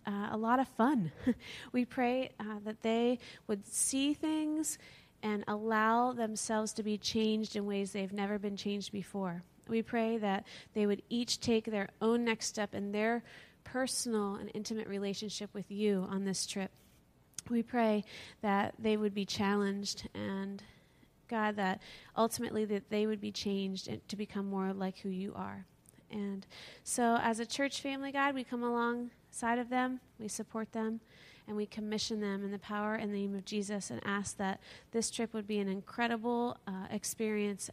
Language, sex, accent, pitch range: English, female, American, 200-230 Hz